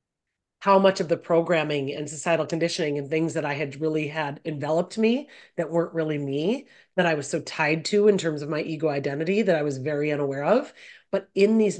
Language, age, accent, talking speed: English, 30-49, American, 215 wpm